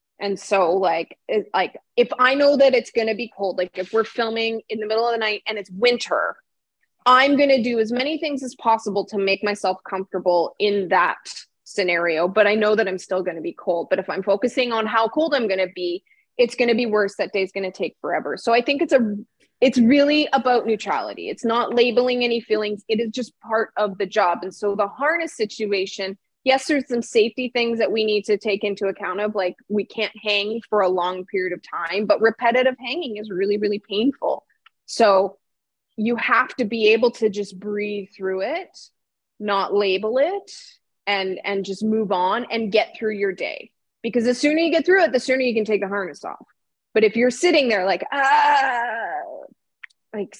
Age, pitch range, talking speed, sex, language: 20-39, 200-250 Hz, 205 wpm, female, English